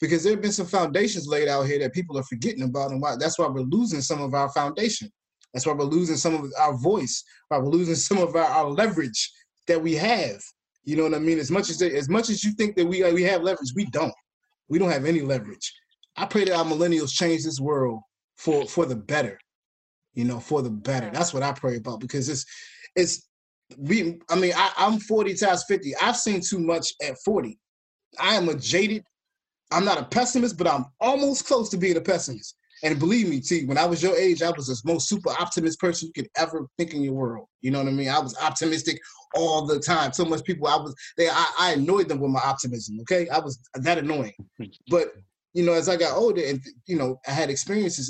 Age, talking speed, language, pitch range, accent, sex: 20-39, 235 wpm, English, 140-185 Hz, American, male